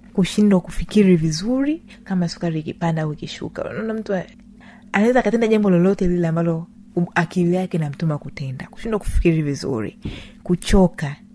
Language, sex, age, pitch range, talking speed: Swahili, female, 30-49, 175-225 Hz, 135 wpm